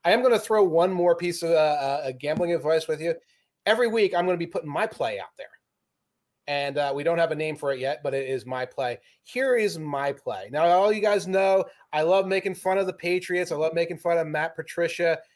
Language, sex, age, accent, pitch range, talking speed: English, male, 30-49, American, 155-195 Hz, 245 wpm